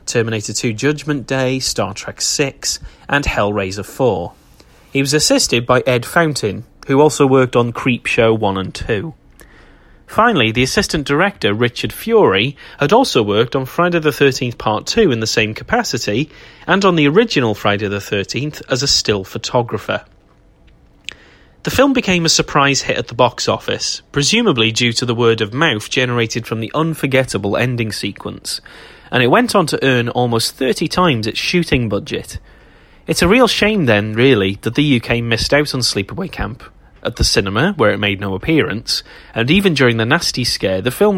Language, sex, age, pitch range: English, male, 30-49, 110-150 Hz